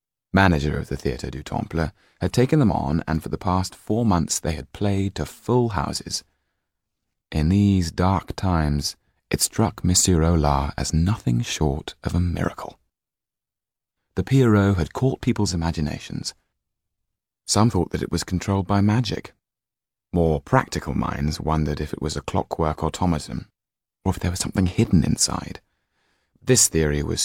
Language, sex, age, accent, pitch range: Chinese, male, 30-49, British, 80-110 Hz